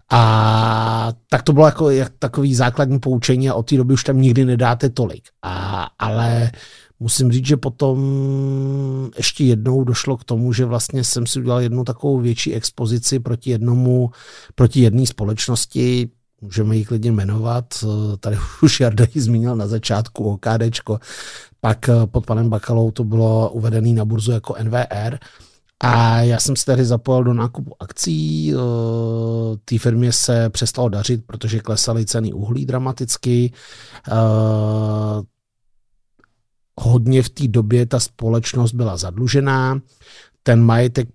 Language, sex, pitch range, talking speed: Czech, male, 110-125 Hz, 140 wpm